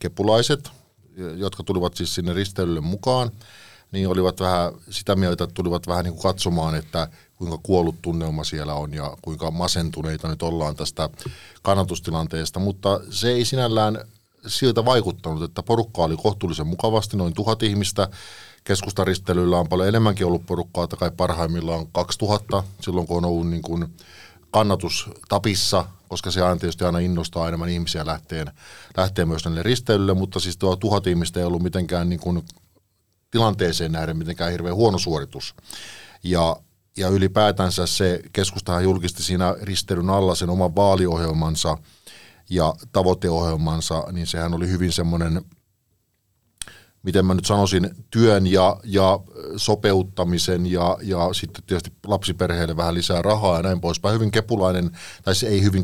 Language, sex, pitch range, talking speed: Finnish, male, 85-100 Hz, 140 wpm